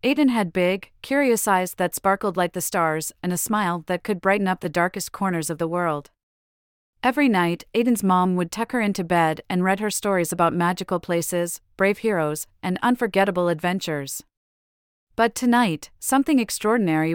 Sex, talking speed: female, 170 wpm